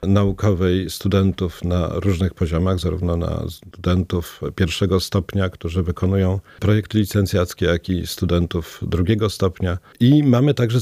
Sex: male